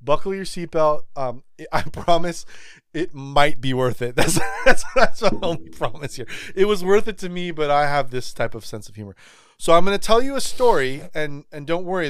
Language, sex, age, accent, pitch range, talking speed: English, male, 30-49, American, 115-170 Hz, 220 wpm